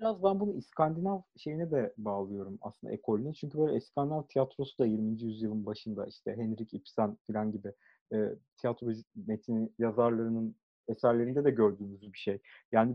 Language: Turkish